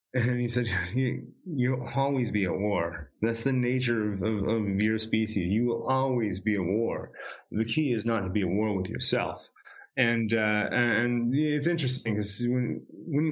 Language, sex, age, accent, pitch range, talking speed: English, male, 30-49, American, 105-125 Hz, 185 wpm